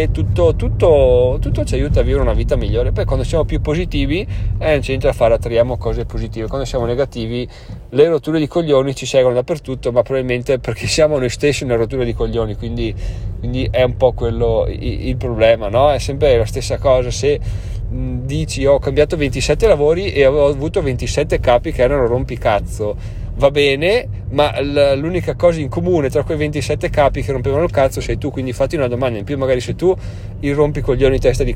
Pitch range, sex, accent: 115-145 Hz, male, native